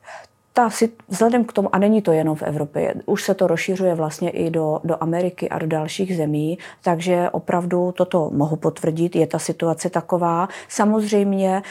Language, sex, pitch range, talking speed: Czech, female, 160-190 Hz, 165 wpm